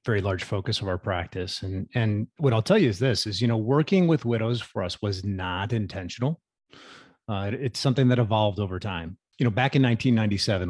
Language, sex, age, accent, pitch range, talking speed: English, male, 30-49, American, 95-120 Hz, 215 wpm